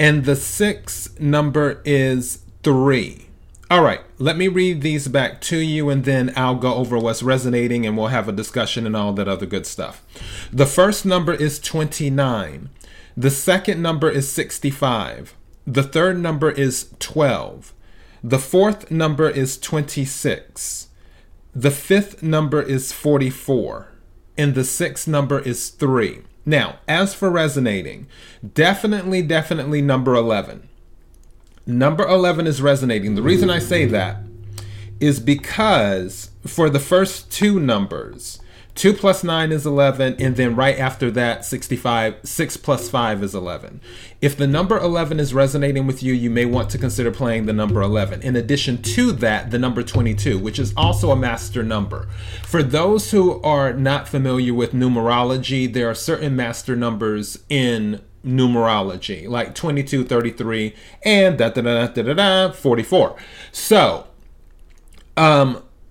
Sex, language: male, English